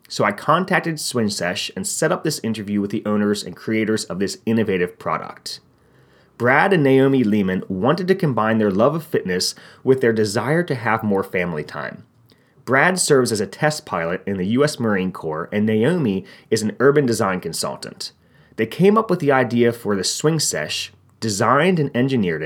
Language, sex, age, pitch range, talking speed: English, male, 30-49, 105-150 Hz, 185 wpm